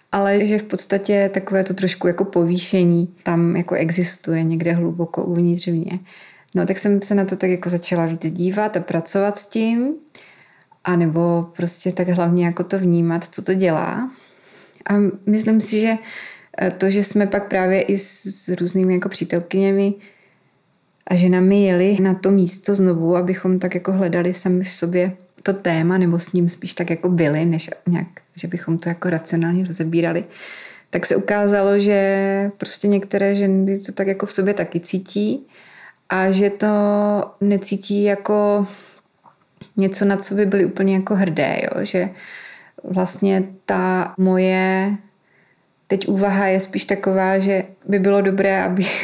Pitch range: 175-200 Hz